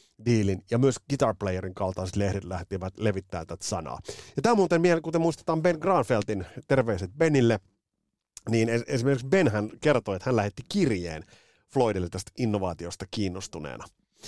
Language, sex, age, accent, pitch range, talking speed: Finnish, male, 30-49, native, 100-135 Hz, 145 wpm